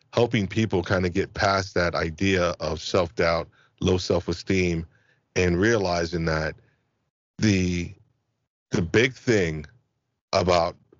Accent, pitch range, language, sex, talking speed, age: American, 85-105 Hz, English, male, 120 wpm, 40-59